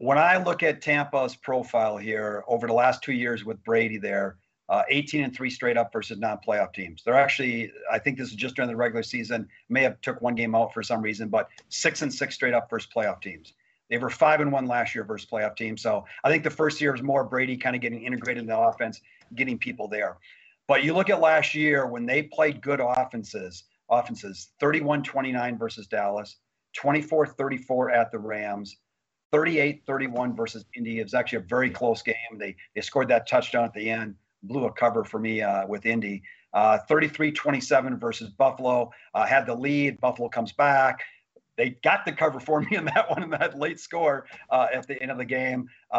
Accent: American